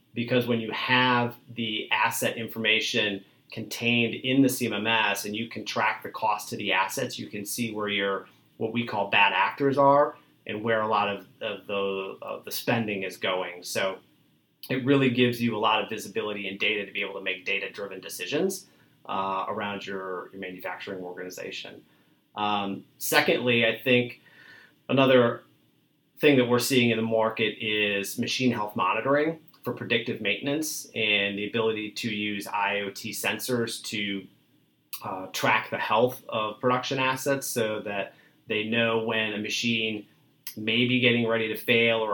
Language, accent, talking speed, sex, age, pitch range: English, American, 160 wpm, male, 30-49, 105-125 Hz